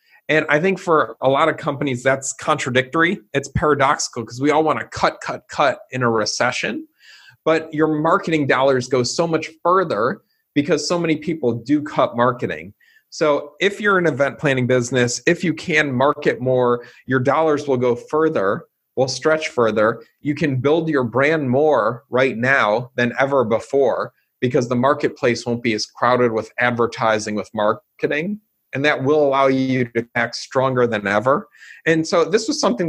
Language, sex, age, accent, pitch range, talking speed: English, male, 40-59, American, 120-155 Hz, 175 wpm